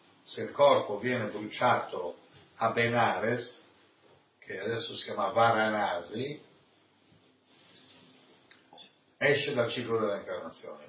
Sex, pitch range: male, 110-125 Hz